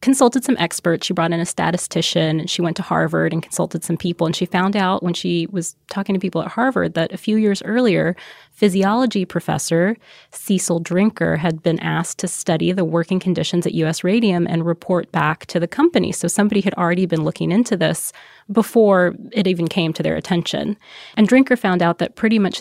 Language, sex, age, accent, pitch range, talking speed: English, female, 20-39, American, 165-200 Hz, 205 wpm